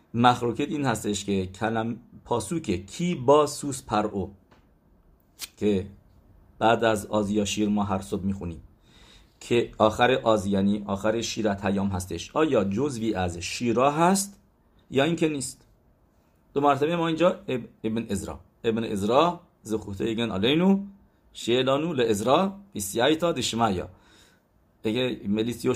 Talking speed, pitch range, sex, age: 120 wpm, 105-140 Hz, male, 50-69